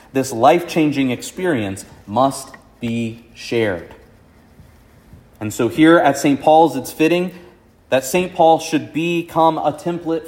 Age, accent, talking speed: 30-49, American, 130 wpm